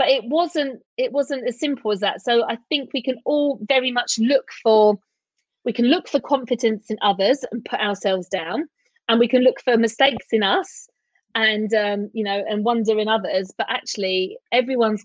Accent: British